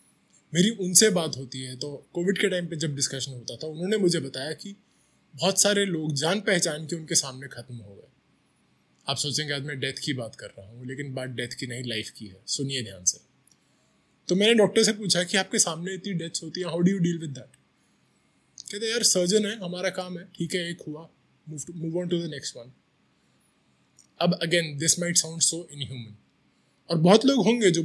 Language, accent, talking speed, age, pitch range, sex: Hindi, native, 165 wpm, 20-39, 130-180 Hz, male